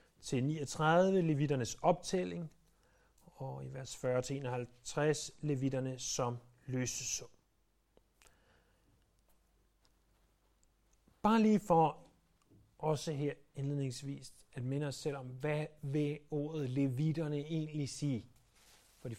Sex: male